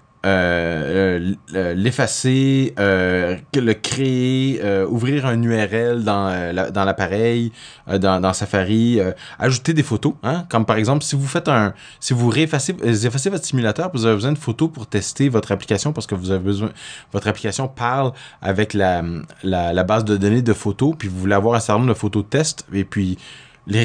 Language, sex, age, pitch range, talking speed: French, male, 20-39, 100-125 Hz, 200 wpm